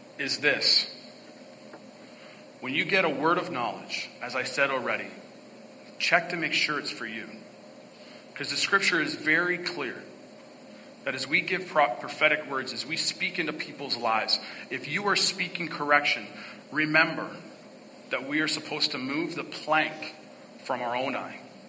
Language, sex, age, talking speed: English, male, 40-59, 155 wpm